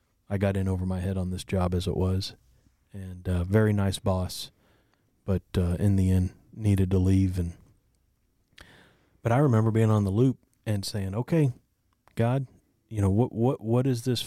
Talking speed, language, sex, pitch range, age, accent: 190 wpm, English, male, 95-110 Hz, 30-49, American